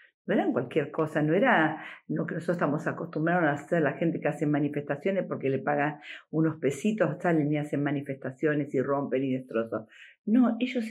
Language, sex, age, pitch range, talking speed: Spanish, female, 50-69, 155-225 Hz, 180 wpm